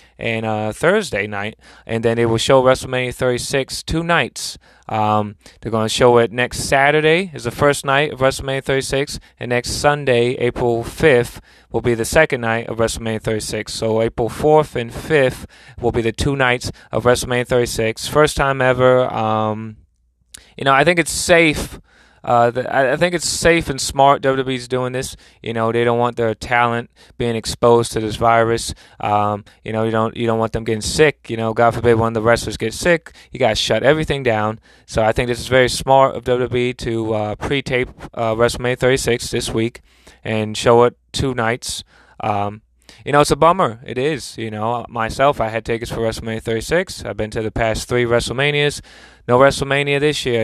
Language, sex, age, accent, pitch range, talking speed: English, male, 20-39, American, 110-130 Hz, 195 wpm